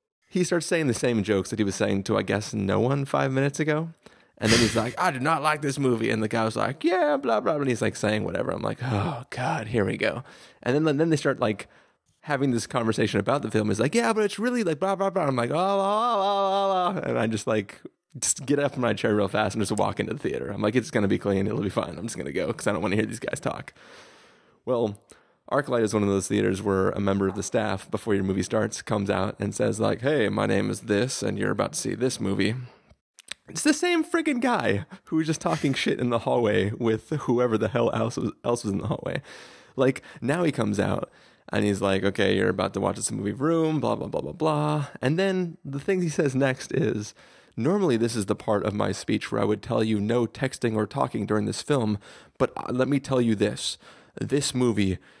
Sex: male